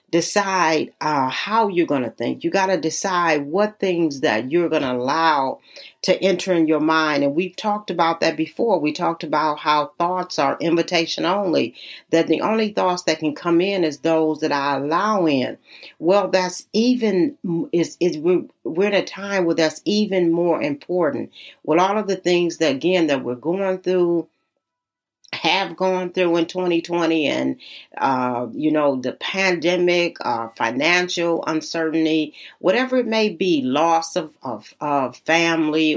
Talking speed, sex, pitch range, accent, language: 160 wpm, female, 155-200 Hz, American, English